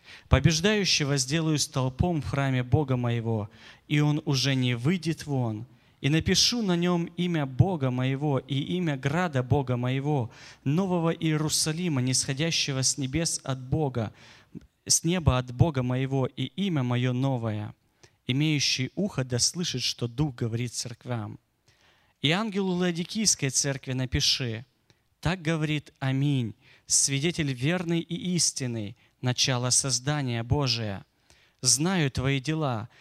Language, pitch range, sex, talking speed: Russian, 125-160 Hz, male, 120 wpm